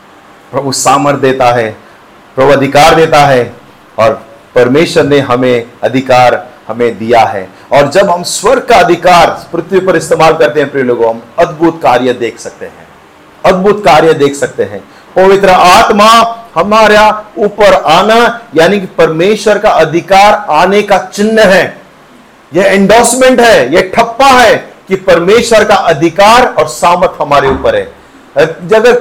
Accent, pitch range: native, 145-210 Hz